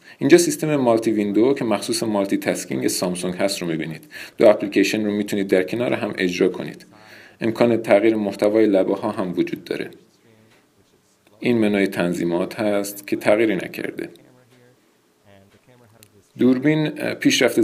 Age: 40-59